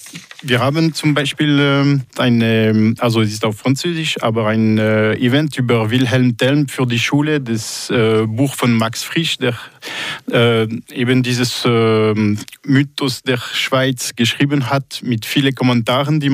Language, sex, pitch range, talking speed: German, male, 115-130 Hz, 130 wpm